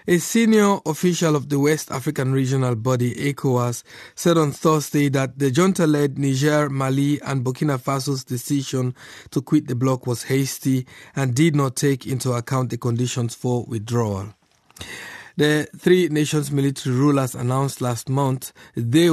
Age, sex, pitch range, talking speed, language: 50-69, male, 120-145 Hz, 145 wpm, English